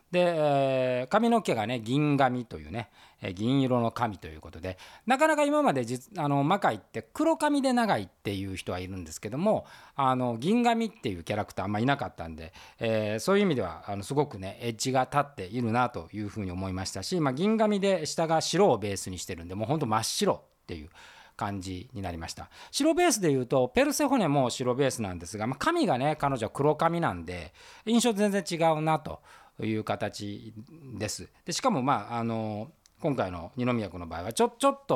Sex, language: male, Japanese